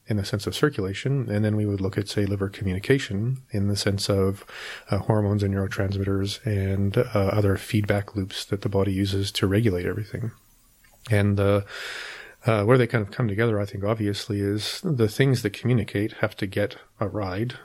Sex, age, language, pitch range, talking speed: male, 30-49, English, 100-115 Hz, 190 wpm